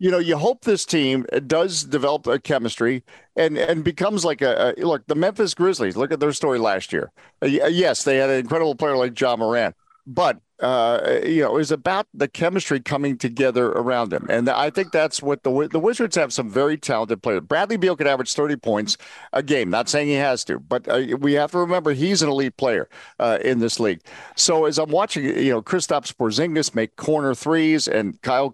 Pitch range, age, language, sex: 130-165 Hz, 50-69, English, male